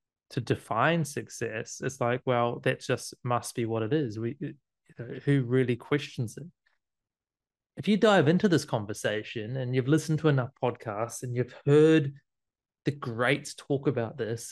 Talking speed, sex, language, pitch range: 165 wpm, male, English, 110-140 Hz